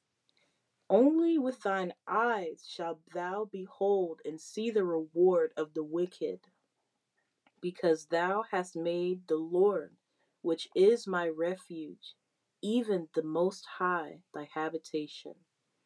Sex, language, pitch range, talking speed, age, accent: female, English, 165-215 Hz, 115 wpm, 30-49, American